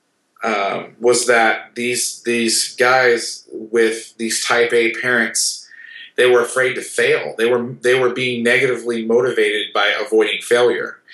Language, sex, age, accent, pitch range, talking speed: English, male, 30-49, American, 115-130 Hz, 140 wpm